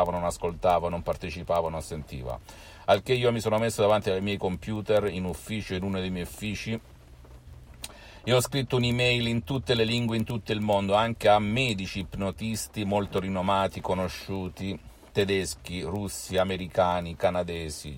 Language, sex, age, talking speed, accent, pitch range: Italian, male, 50-69, 155 wpm, native, 85-110 Hz